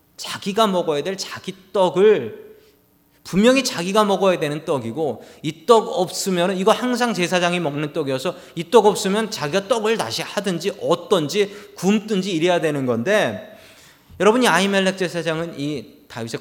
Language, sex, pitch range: Korean, male, 135-205 Hz